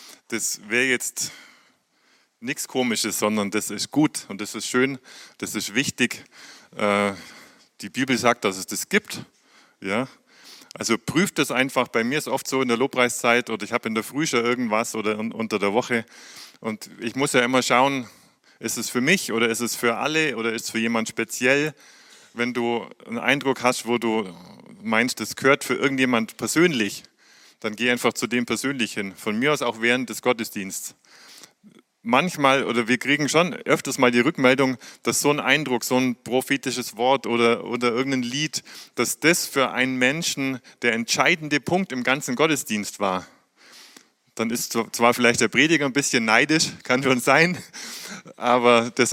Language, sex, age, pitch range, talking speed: German, male, 30-49, 115-135 Hz, 170 wpm